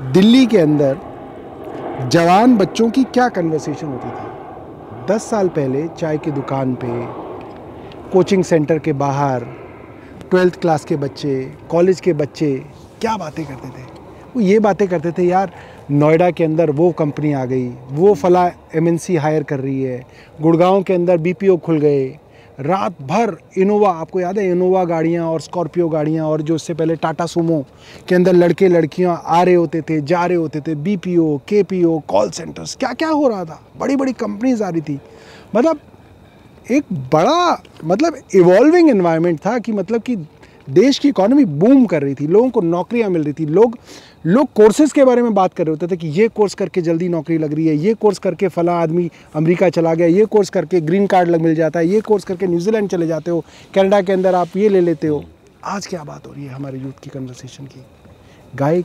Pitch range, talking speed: 145-190 Hz, 195 wpm